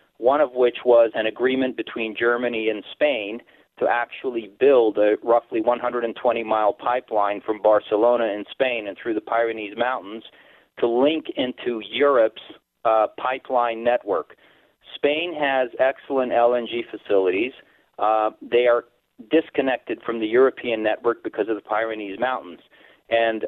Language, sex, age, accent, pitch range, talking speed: English, male, 40-59, American, 110-130 Hz, 135 wpm